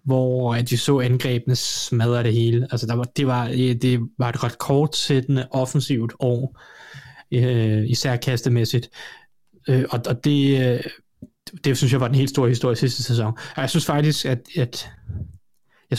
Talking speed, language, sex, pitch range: 160 wpm, Danish, male, 120-135 Hz